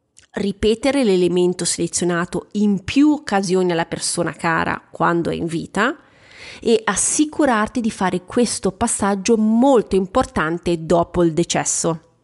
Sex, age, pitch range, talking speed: female, 30-49, 175-235 Hz, 120 wpm